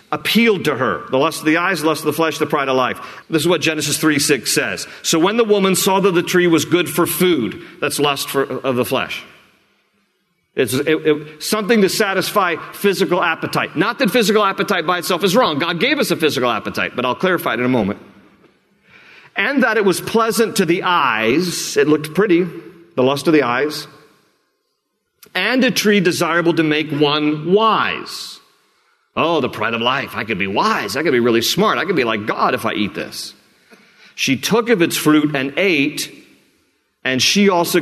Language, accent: English, American